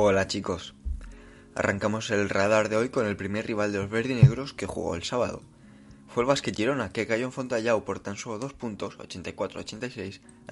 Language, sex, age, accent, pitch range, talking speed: Spanish, male, 20-39, Spanish, 95-120 Hz, 175 wpm